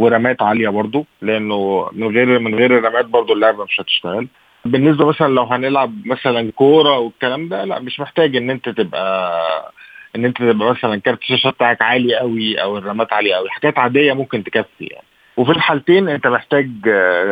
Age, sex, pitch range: 20-39, male, 110-140 Hz